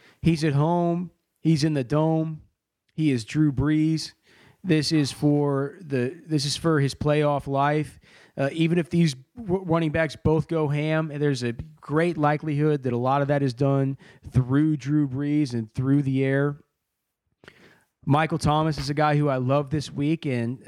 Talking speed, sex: 170 wpm, male